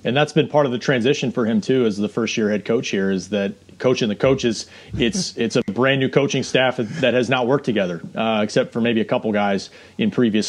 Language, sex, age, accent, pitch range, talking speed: English, male, 30-49, American, 110-145 Hz, 235 wpm